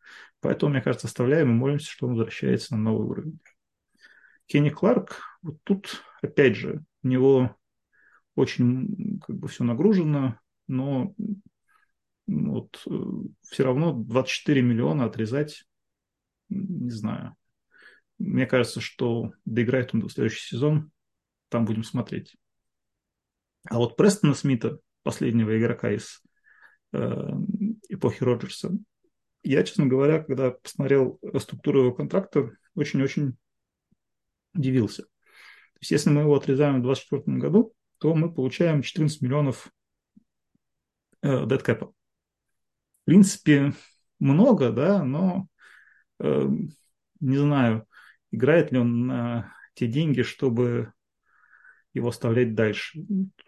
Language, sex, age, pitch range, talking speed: Russian, male, 30-49, 120-155 Hz, 110 wpm